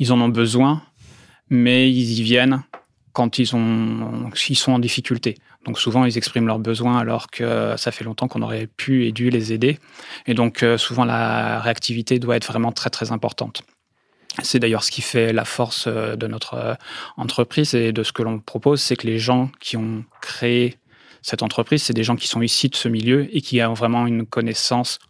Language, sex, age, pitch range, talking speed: French, male, 20-39, 115-125 Hz, 200 wpm